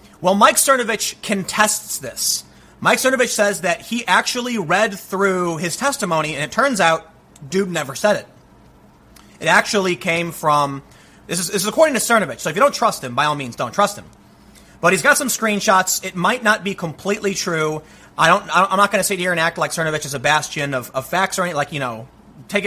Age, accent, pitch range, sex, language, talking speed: 30-49, American, 160-225 Hz, male, English, 205 wpm